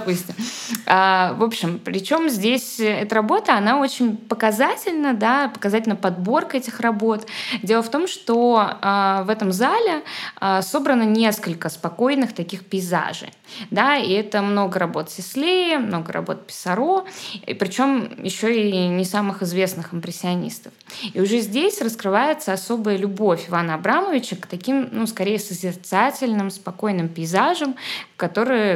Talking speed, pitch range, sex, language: 125 wpm, 185-240 Hz, female, Russian